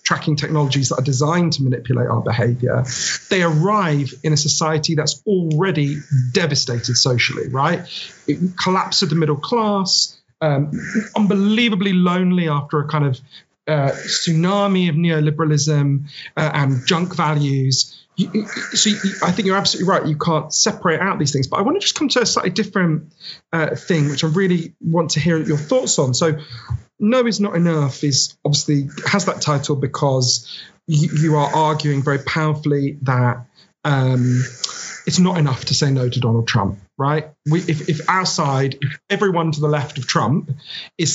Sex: male